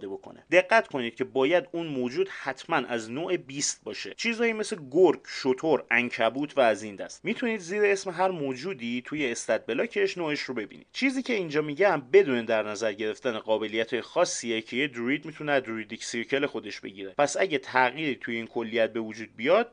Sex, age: male, 30-49